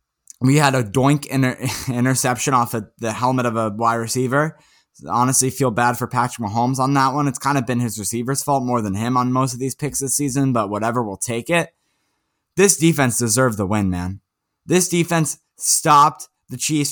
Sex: male